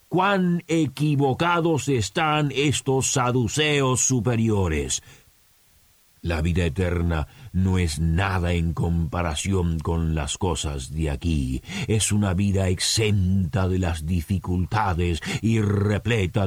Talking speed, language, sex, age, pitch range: 100 wpm, Spanish, male, 50-69, 90-125 Hz